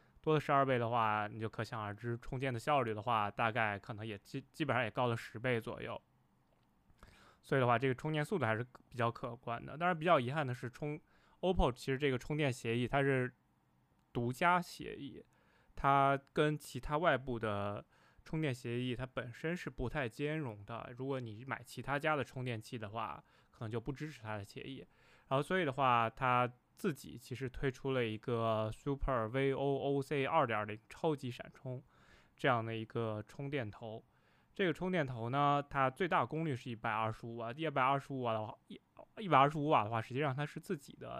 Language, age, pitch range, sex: Chinese, 20-39, 115-145 Hz, male